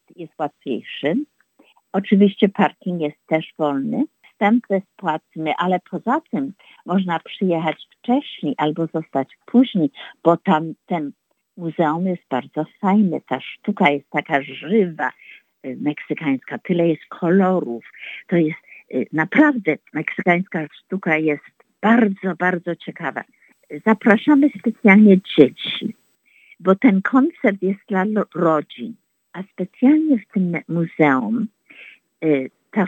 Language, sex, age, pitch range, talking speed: Polish, female, 50-69, 165-225 Hz, 110 wpm